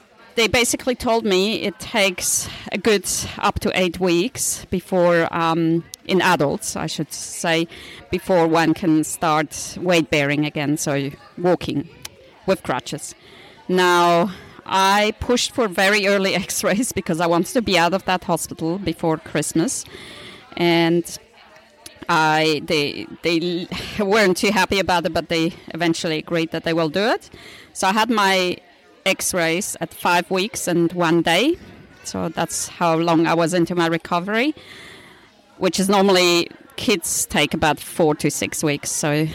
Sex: female